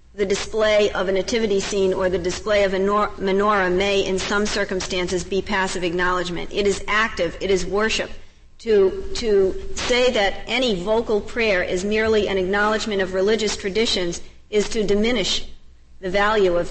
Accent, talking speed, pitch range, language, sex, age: American, 165 wpm, 190-220 Hz, English, female, 40-59